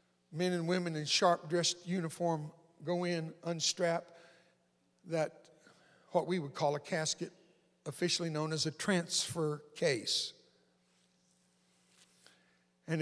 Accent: American